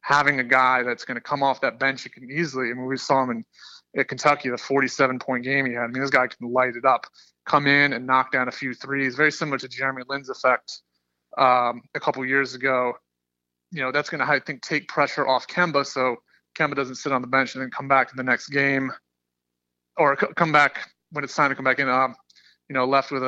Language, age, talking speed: English, 30-49, 245 wpm